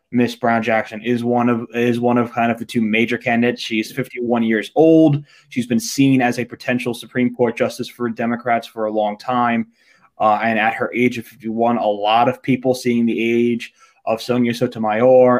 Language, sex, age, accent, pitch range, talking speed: English, male, 20-39, American, 115-125 Hz, 205 wpm